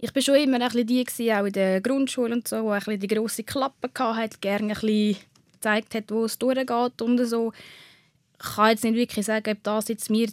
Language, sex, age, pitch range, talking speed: German, female, 10-29, 210-245 Hz, 230 wpm